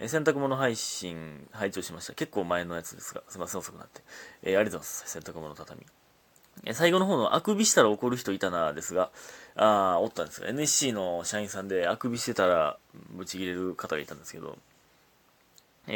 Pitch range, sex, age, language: 95-145 Hz, male, 30-49, Japanese